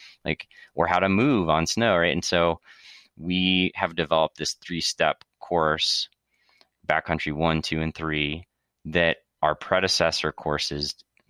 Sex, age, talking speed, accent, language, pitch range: male, 30-49, 140 wpm, American, English, 75-85 Hz